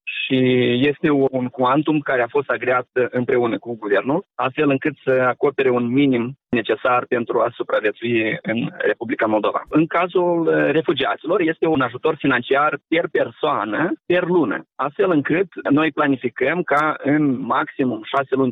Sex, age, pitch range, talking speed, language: male, 30-49, 125-165 Hz, 145 wpm, Romanian